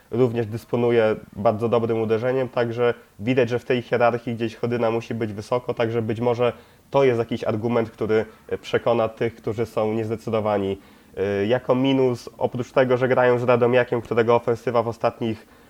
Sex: male